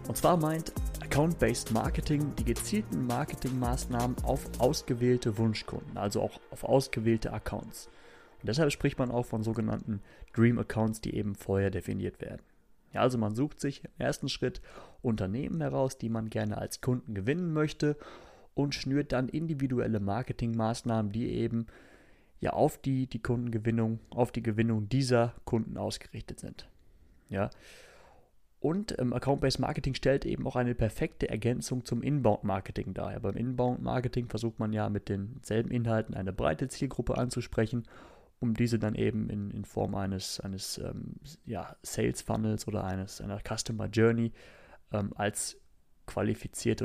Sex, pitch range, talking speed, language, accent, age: male, 110-130 Hz, 140 wpm, German, German, 30-49